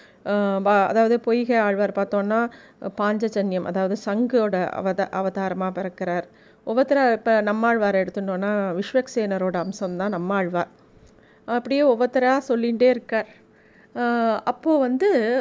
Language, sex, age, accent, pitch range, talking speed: Tamil, female, 30-49, native, 205-250 Hz, 90 wpm